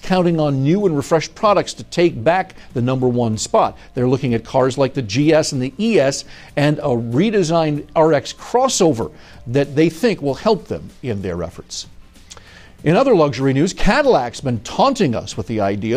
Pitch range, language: 135-185 Hz, English